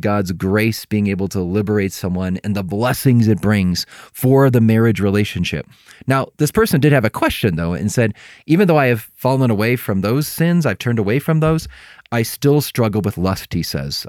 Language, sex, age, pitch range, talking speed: English, male, 30-49, 100-125 Hz, 200 wpm